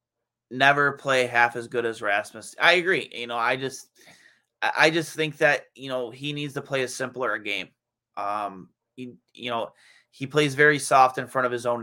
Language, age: English, 20-39